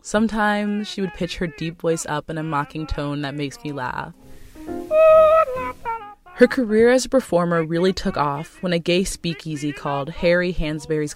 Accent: American